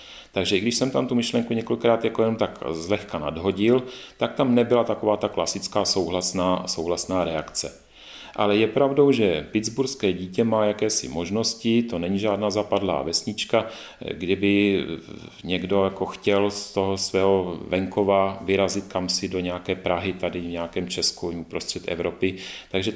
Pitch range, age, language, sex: 95-115 Hz, 40-59, Czech, male